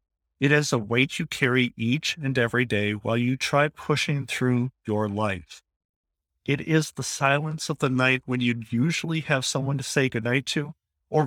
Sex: male